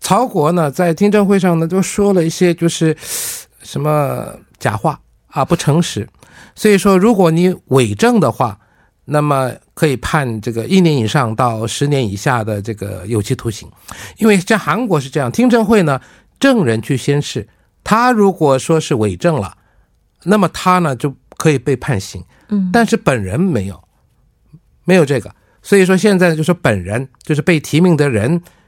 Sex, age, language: male, 50-69, Korean